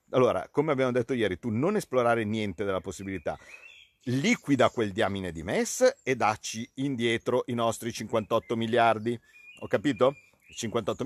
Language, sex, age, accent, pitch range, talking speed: Italian, male, 50-69, native, 115-155 Hz, 140 wpm